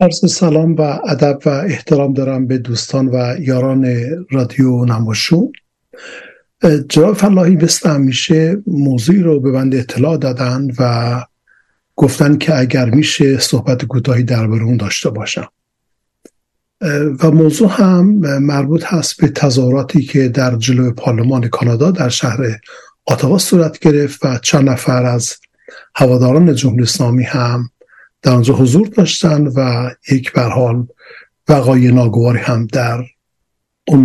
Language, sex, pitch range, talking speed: Persian, male, 125-160 Hz, 125 wpm